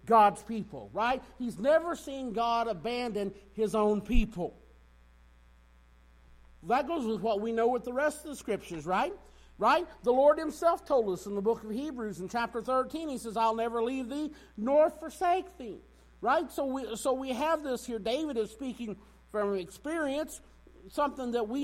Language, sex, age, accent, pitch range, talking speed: English, male, 50-69, American, 220-290 Hz, 175 wpm